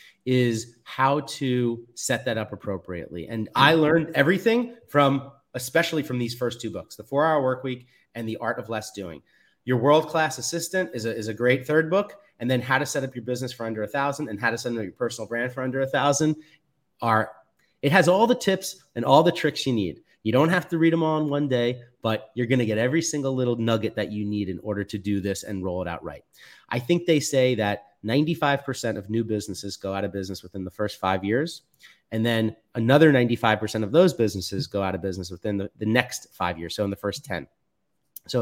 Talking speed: 225 wpm